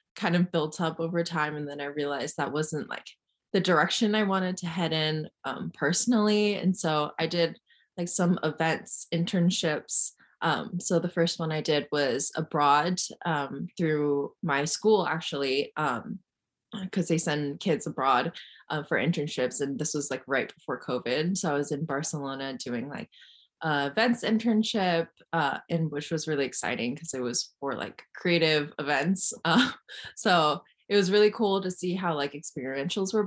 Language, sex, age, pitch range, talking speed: English, female, 20-39, 150-185 Hz, 170 wpm